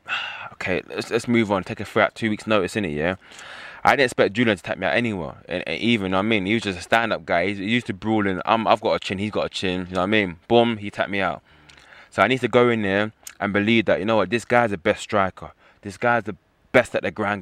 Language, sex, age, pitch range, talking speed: English, male, 20-39, 95-115 Hz, 305 wpm